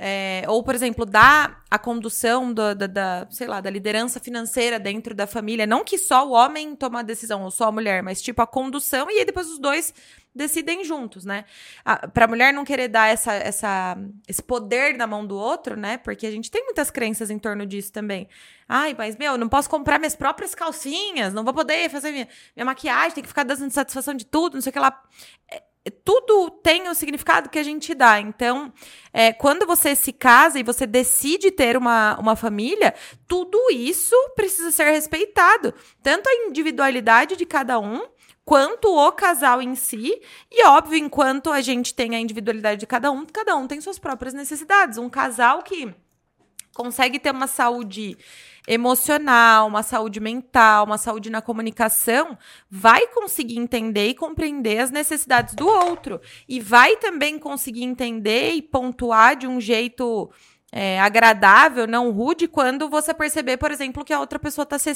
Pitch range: 225-300 Hz